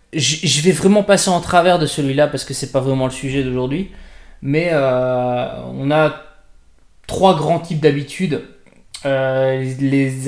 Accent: French